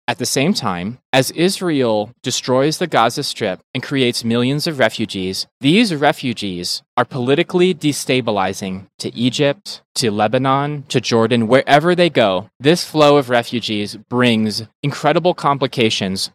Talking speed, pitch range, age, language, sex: 130 wpm, 115-145 Hz, 20-39, English, male